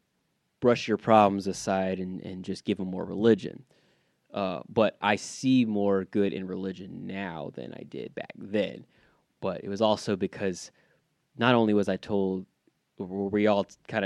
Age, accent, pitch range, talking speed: 20-39, American, 95-110 Hz, 165 wpm